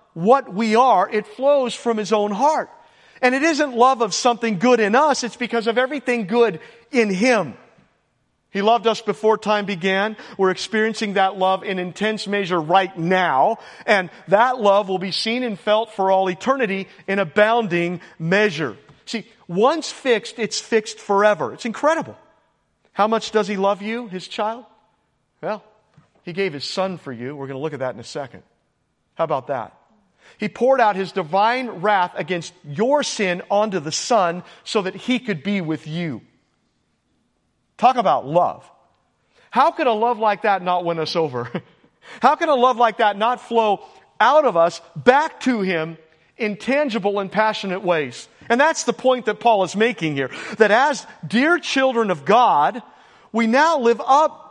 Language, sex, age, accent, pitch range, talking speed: English, male, 40-59, American, 190-240 Hz, 175 wpm